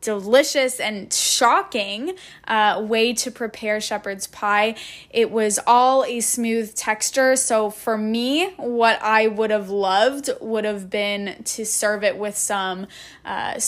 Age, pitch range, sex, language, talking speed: 10-29, 210-255 Hz, female, English, 140 wpm